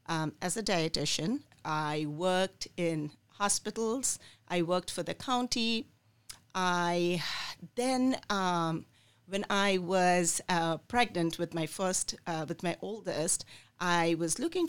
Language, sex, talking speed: English, female, 125 wpm